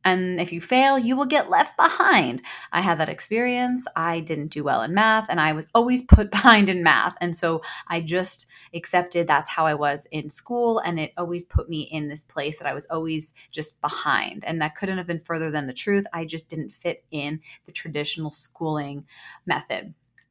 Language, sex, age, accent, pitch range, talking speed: English, female, 20-39, American, 160-210 Hz, 205 wpm